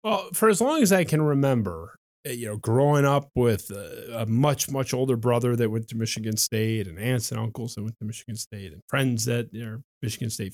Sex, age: male, 30-49